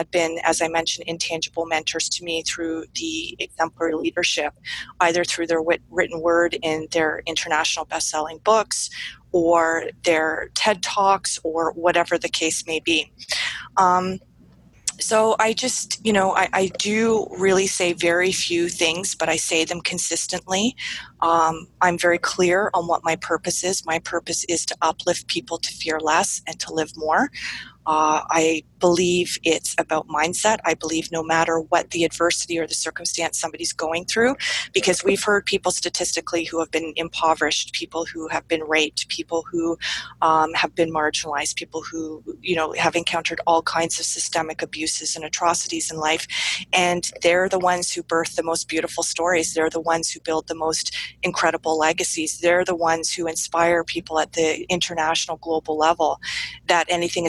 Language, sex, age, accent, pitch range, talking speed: English, female, 30-49, American, 160-175 Hz, 170 wpm